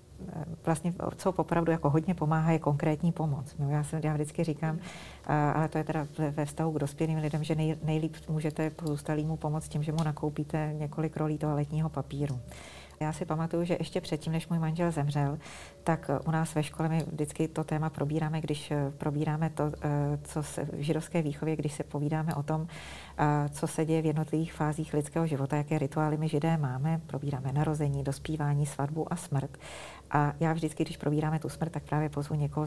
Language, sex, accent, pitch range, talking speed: Czech, female, native, 145-160 Hz, 185 wpm